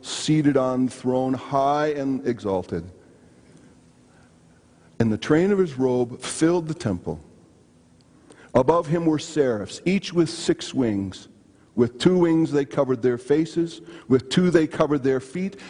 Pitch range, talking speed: 125-160 Hz, 140 wpm